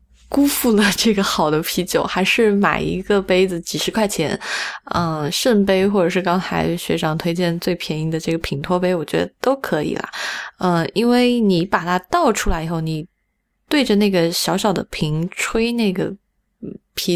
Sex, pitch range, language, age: female, 170-210 Hz, Chinese, 20-39